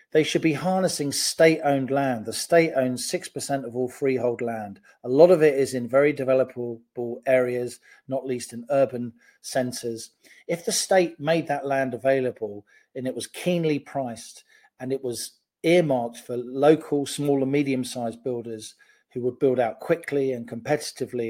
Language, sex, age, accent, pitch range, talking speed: English, male, 40-59, British, 125-155 Hz, 160 wpm